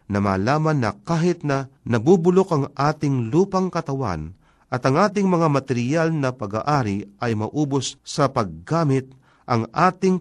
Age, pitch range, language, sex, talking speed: 50-69, 110-155 Hz, Filipino, male, 130 wpm